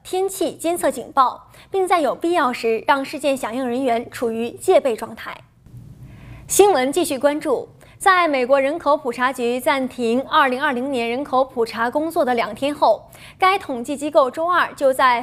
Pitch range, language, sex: 245-320 Hz, Chinese, female